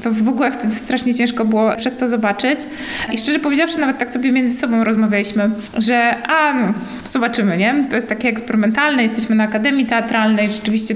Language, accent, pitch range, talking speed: Polish, native, 220-265 Hz, 180 wpm